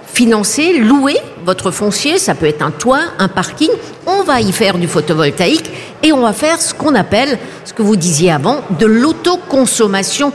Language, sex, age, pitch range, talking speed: French, female, 60-79, 175-240 Hz, 180 wpm